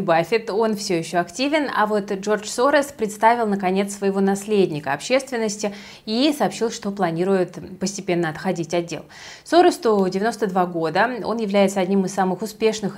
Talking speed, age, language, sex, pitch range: 145 wpm, 20-39, Russian, female, 180-220 Hz